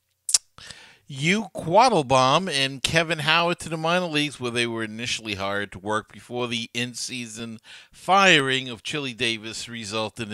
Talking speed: 140 wpm